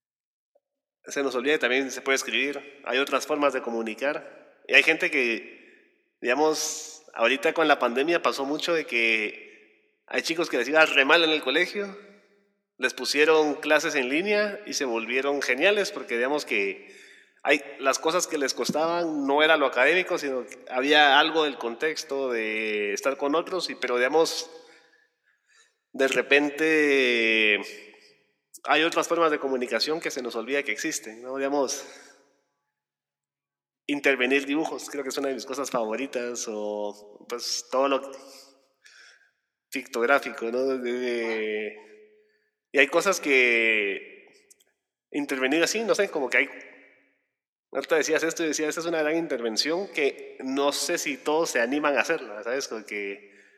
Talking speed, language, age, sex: 155 wpm, Spanish, 30-49, male